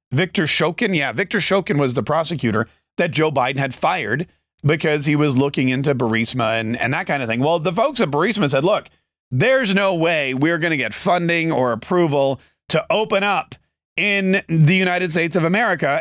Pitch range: 130-170 Hz